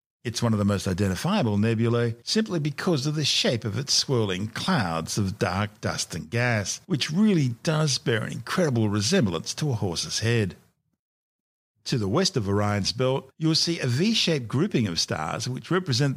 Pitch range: 105-145 Hz